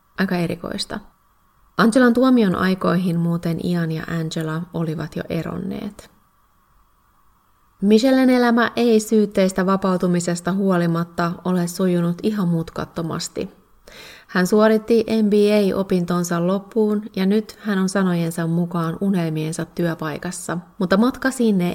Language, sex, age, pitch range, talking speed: Finnish, female, 30-49, 170-210 Hz, 100 wpm